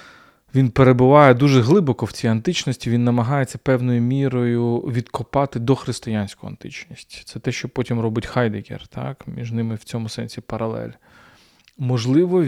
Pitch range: 115-140 Hz